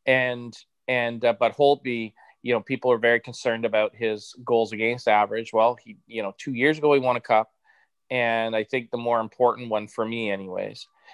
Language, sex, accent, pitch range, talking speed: English, male, American, 110-140 Hz, 200 wpm